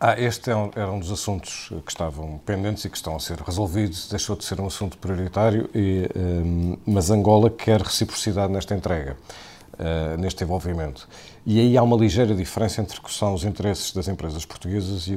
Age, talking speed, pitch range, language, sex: 50-69, 180 wpm, 90-105 Hz, Portuguese, male